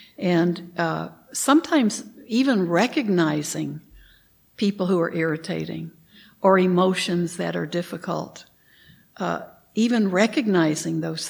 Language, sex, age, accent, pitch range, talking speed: English, female, 60-79, American, 175-210 Hz, 95 wpm